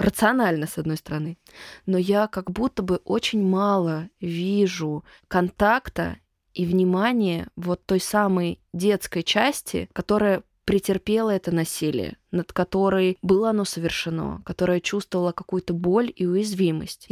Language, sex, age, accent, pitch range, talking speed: Russian, female, 20-39, native, 175-210 Hz, 125 wpm